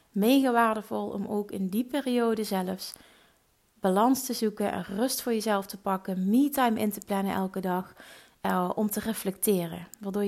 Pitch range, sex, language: 195-235 Hz, female, Dutch